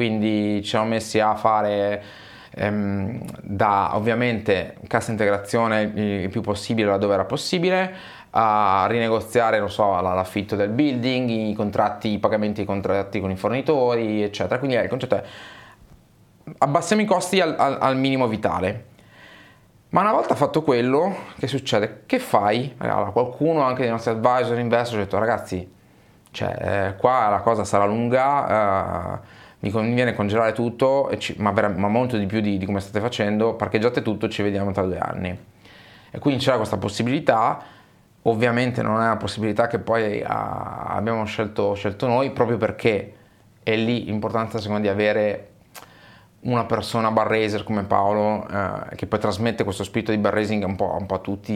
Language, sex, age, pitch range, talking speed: Italian, male, 20-39, 100-120 Hz, 160 wpm